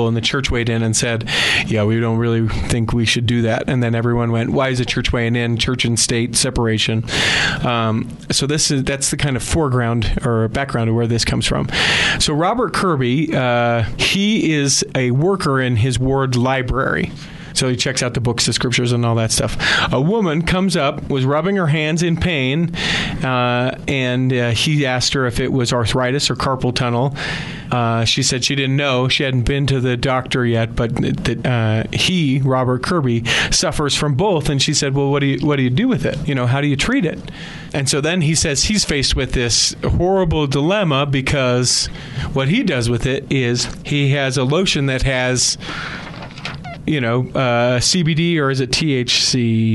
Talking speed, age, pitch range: 205 wpm, 40-59, 120-150 Hz